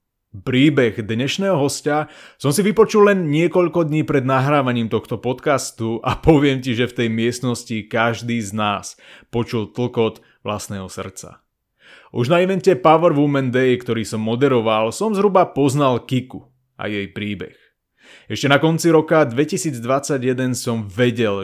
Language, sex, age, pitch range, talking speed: Slovak, male, 30-49, 110-140 Hz, 140 wpm